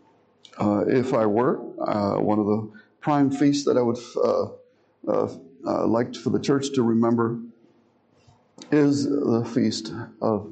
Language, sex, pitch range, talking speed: English, male, 115-165 Hz, 155 wpm